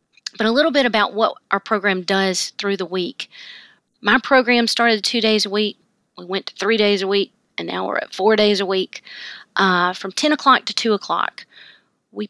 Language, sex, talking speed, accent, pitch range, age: English, female, 205 wpm, American, 200-245 Hz, 40-59